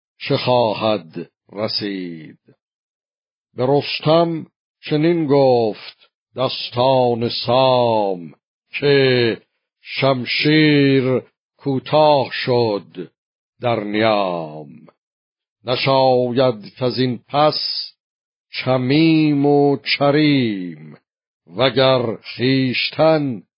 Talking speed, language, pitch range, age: 60 wpm, Persian, 115-140 Hz, 60-79